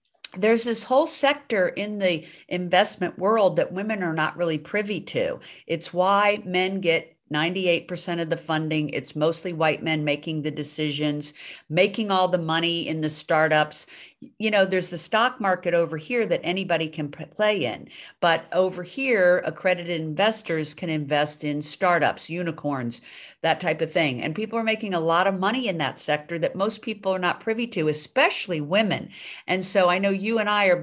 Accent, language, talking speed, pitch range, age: American, English, 180 wpm, 155-195 Hz, 50-69